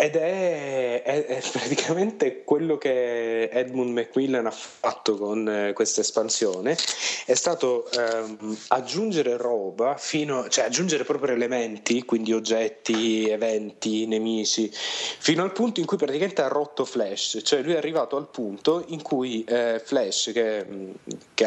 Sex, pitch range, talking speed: male, 115-145 Hz, 140 wpm